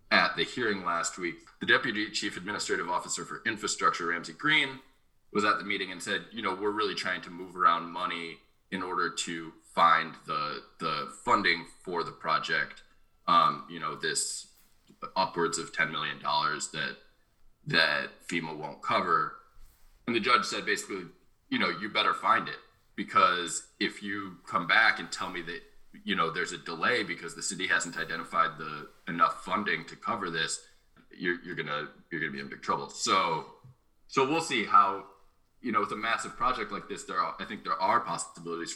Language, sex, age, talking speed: English, male, 20-39, 180 wpm